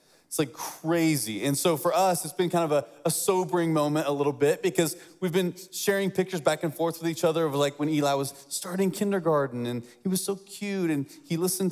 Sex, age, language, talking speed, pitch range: male, 30-49, English, 225 wpm, 150-190 Hz